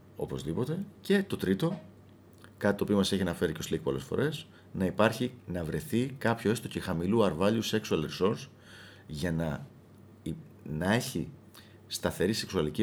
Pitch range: 85-115 Hz